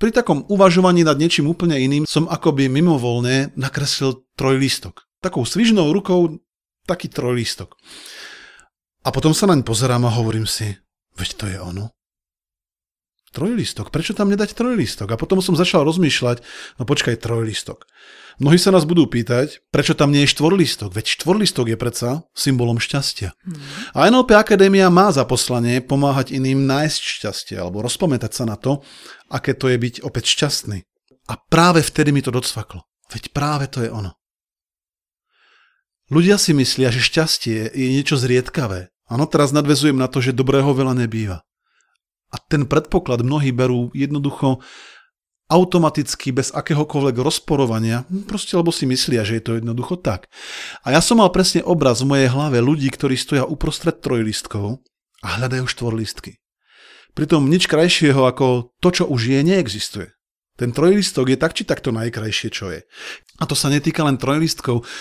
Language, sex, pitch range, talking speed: Slovak, male, 120-160 Hz, 155 wpm